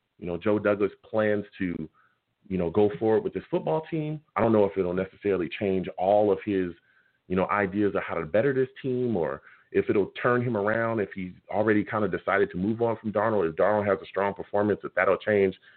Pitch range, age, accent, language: 95-115 Hz, 30-49, American, English